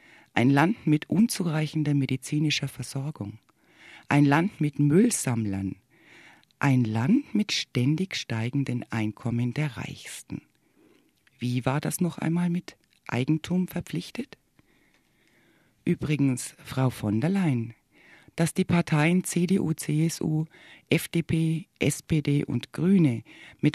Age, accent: 60-79, German